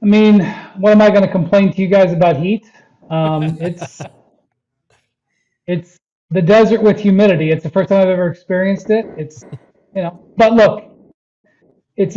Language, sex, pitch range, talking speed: English, male, 160-190 Hz, 170 wpm